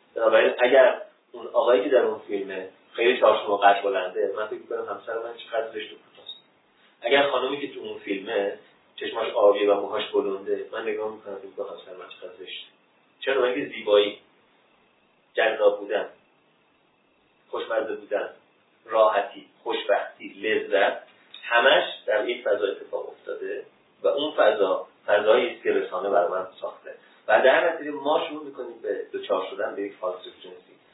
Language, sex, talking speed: Persian, male, 145 wpm